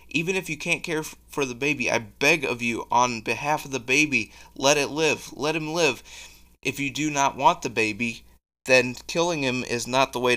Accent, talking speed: American, 215 wpm